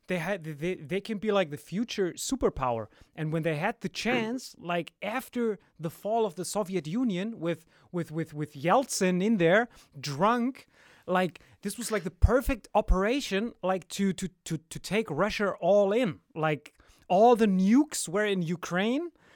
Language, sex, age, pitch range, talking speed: German, male, 30-49, 170-225 Hz, 170 wpm